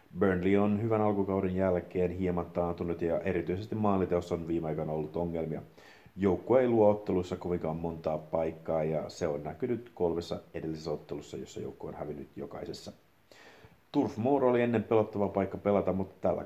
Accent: native